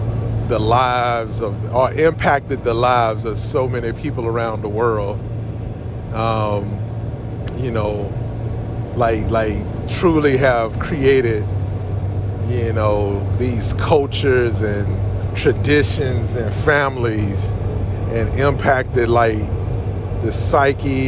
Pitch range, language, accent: 105-125 Hz, English, American